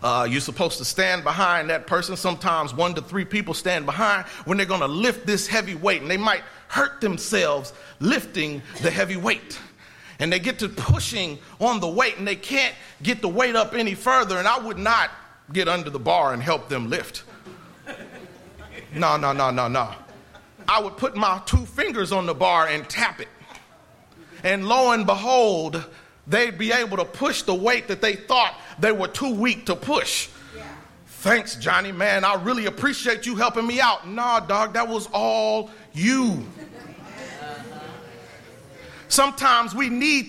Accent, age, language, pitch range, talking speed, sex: American, 40-59, English, 180-250 Hz, 175 wpm, male